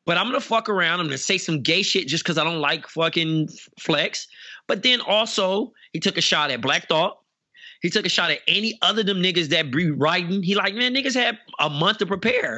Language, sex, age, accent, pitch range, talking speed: English, male, 30-49, American, 150-190 Hz, 235 wpm